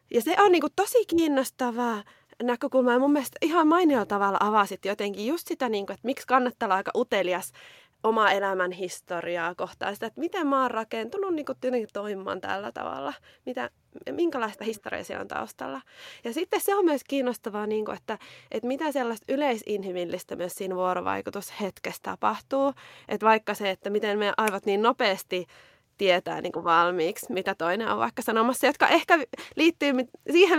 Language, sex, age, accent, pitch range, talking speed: Finnish, female, 20-39, native, 195-275 Hz, 155 wpm